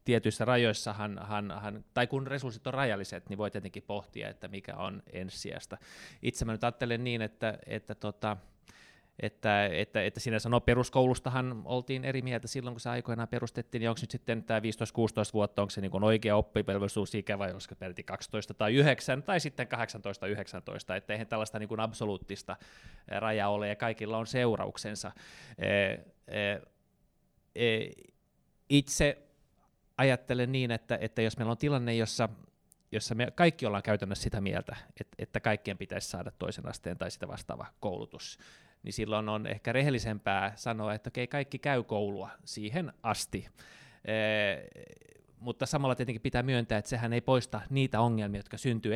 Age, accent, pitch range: 20-39, native, 105-125 Hz